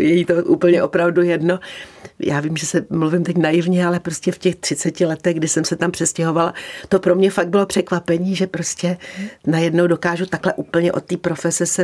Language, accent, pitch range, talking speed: Czech, native, 170-195 Hz, 200 wpm